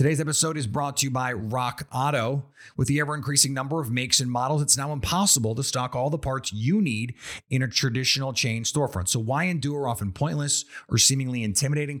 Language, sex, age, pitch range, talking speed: English, male, 30-49, 110-140 Hz, 200 wpm